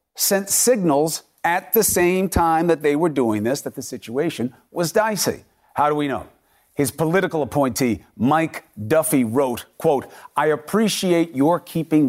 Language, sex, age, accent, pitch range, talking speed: English, male, 50-69, American, 130-190 Hz, 155 wpm